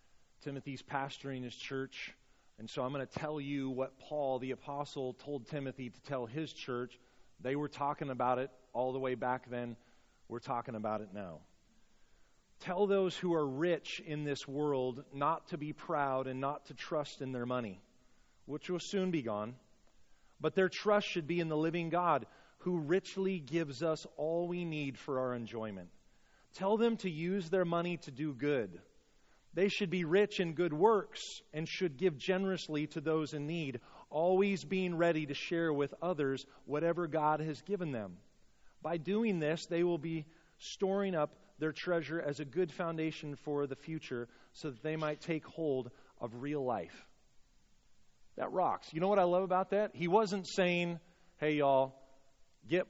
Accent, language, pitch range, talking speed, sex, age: American, English, 135-175 Hz, 175 wpm, male, 30-49